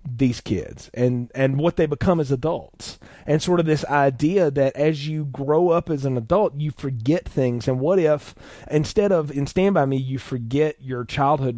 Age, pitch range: 30-49, 115-150 Hz